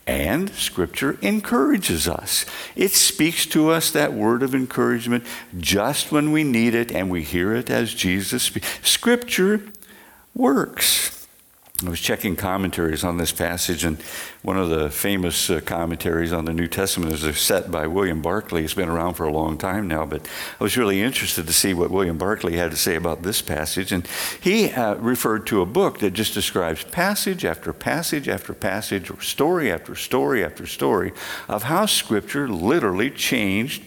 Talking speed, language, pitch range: 175 wpm, English, 85-125 Hz